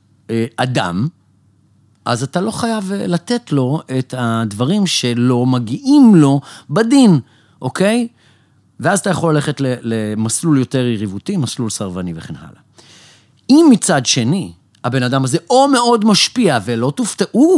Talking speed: 125 wpm